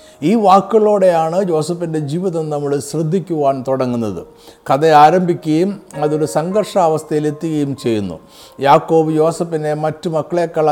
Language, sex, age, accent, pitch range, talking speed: Malayalam, male, 50-69, native, 145-175 Hz, 90 wpm